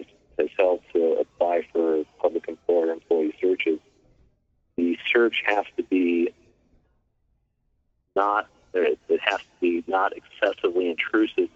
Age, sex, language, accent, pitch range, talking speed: 40-59, male, English, American, 335-425 Hz, 110 wpm